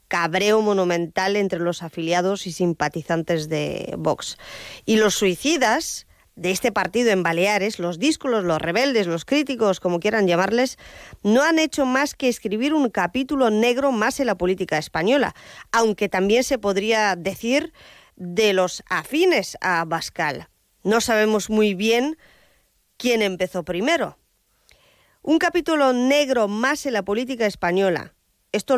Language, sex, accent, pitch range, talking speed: Spanish, female, Spanish, 180-250 Hz, 140 wpm